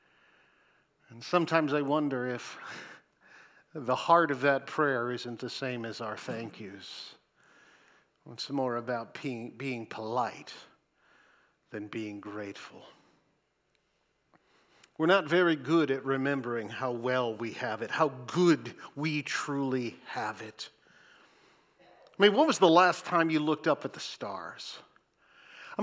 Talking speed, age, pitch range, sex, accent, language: 130 wpm, 50-69, 125-175 Hz, male, American, English